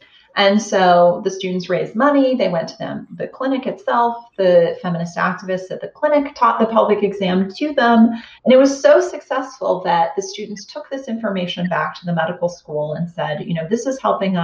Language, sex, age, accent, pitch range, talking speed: English, female, 30-49, American, 170-220 Hz, 200 wpm